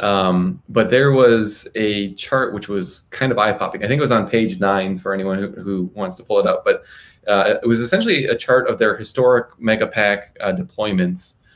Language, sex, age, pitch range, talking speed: English, male, 20-39, 95-115 Hz, 210 wpm